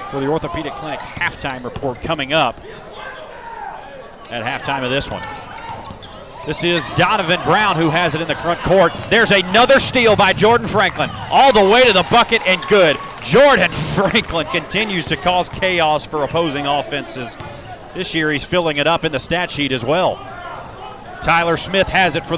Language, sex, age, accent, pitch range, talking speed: English, male, 30-49, American, 135-180 Hz, 170 wpm